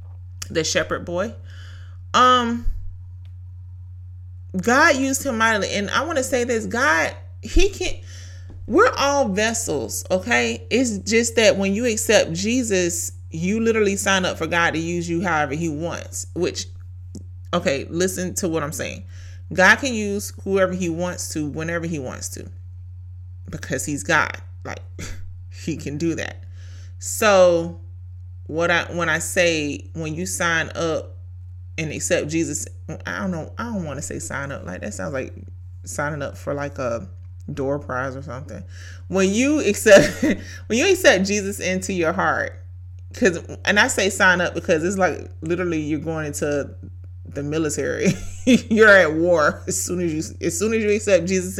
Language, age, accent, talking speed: English, 30-49, American, 165 wpm